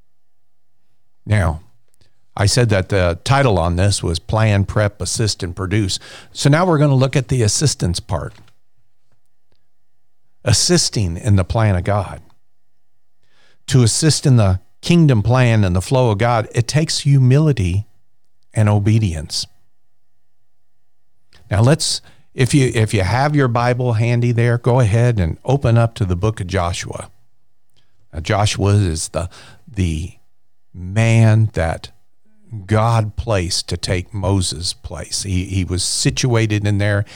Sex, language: male, English